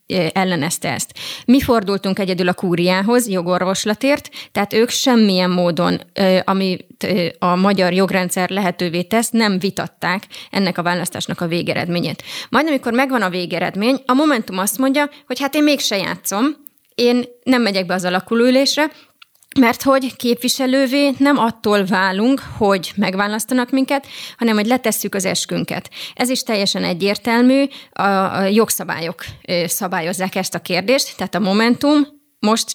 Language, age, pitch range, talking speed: Hungarian, 20-39, 185-250 Hz, 135 wpm